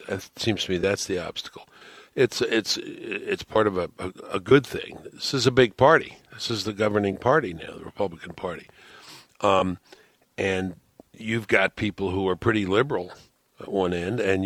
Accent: American